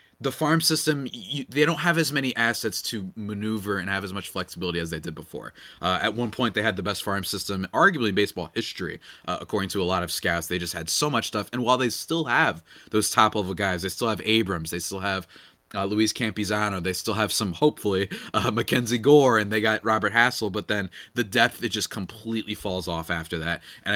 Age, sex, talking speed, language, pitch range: 30-49, male, 230 wpm, English, 95-130 Hz